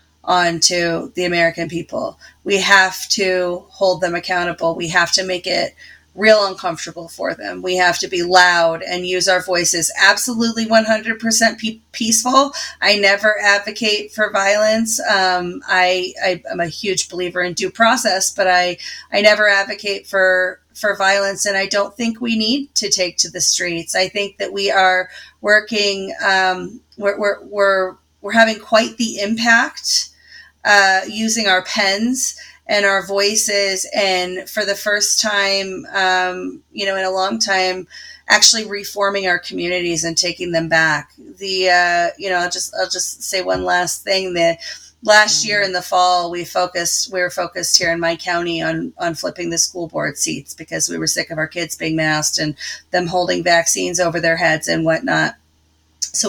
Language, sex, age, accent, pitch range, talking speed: English, female, 30-49, American, 175-205 Hz, 175 wpm